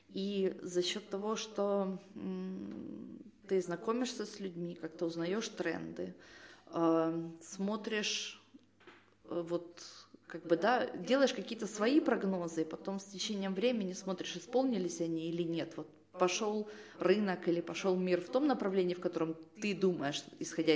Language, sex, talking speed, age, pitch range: Ukrainian, female, 125 wpm, 20-39, 165-220 Hz